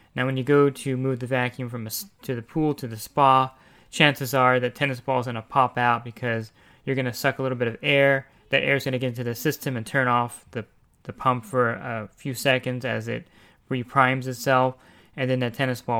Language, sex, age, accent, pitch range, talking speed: English, male, 20-39, American, 115-130 Hz, 240 wpm